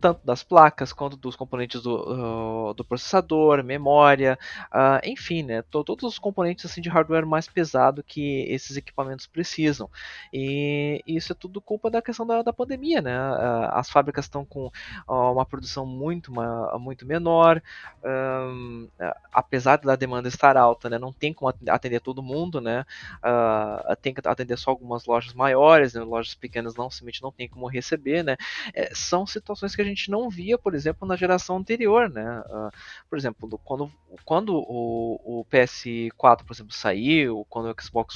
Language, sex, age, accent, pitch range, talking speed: Portuguese, male, 20-39, Brazilian, 120-170 Hz, 160 wpm